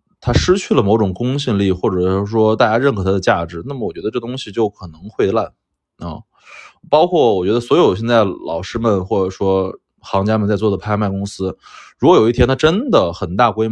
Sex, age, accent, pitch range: male, 20-39, native, 95-110 Hz